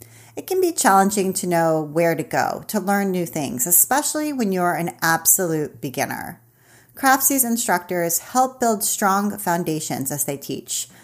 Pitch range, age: 165-225 Hz, 40-59